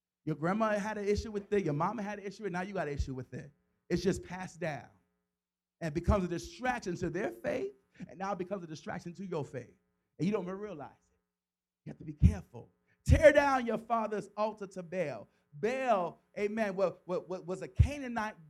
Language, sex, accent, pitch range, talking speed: English, male, American, 160-215 Hz, 210 wpm